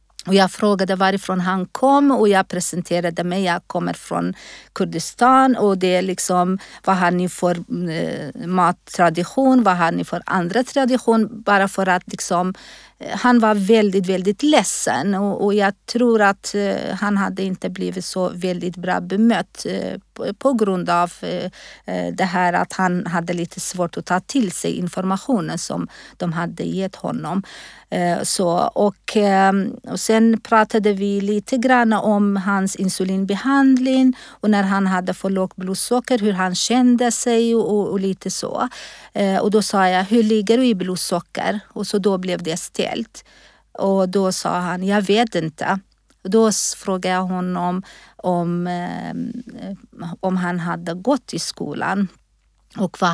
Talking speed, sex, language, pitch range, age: 160 wpm, female, Swedish, 180-220 Hz, 50-69